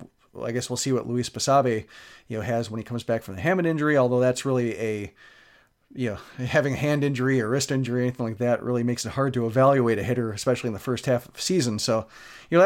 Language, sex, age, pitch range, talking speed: English, male, 40-59, 120-145 Hz, 250 wpm